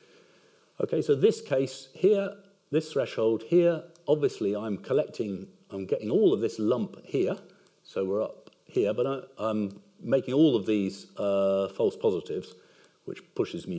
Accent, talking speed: British, 150 wpm